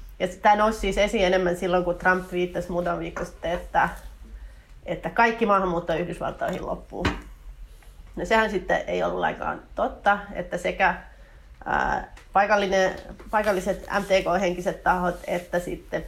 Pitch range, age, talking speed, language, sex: 175-195 Hz, 30-49, 130 wpm, Finnish, female